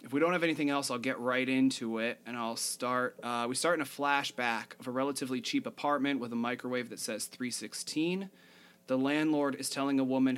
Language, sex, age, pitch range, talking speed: English, male, 30-49, 115-135 Hz, 215 wpm